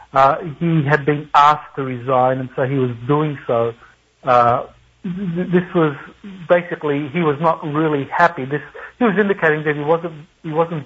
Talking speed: 175 wpm